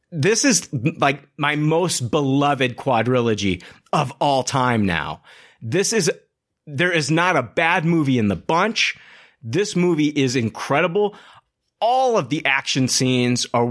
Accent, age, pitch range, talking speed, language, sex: American, 30-49, 115-150 Hz, 140 wpm, English, male